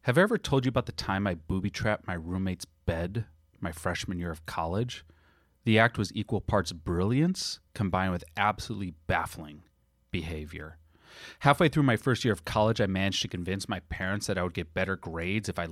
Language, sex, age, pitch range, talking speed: English, male, 30-49, 85-115 Hz, 190 wpm